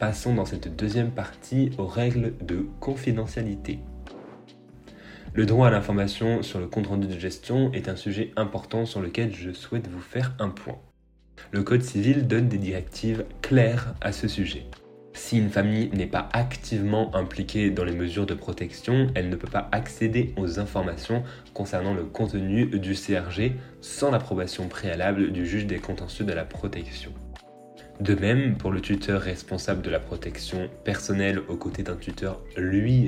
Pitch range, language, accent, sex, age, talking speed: 90-115 Hz, French, French, male, 20-39, 160 wpm